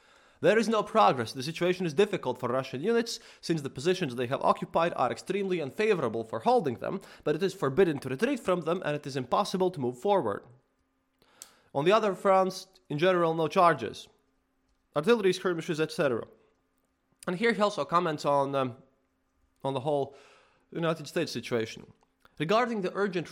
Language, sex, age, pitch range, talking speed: English, male, 20-39, 135-185 Hz, 165 wpm